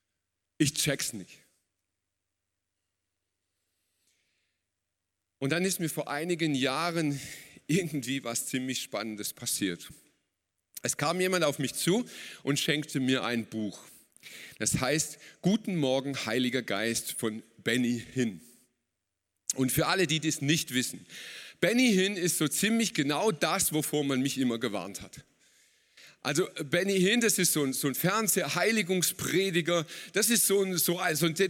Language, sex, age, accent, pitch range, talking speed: German, male, 40-59, German, 120-195 Hz, 140 wpm